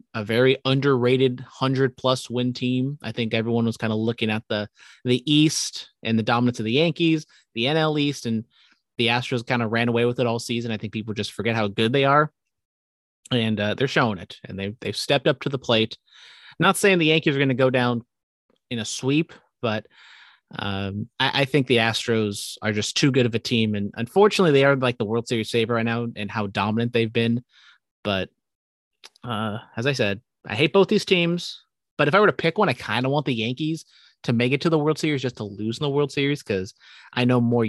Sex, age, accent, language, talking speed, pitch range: male, 30-49, American, English, 230 wpm, 110-140 Hz